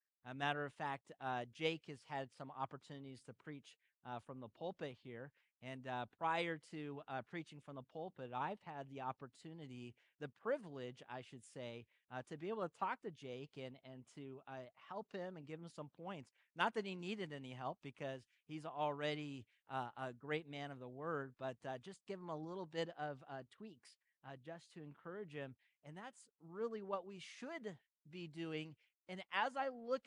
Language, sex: English, male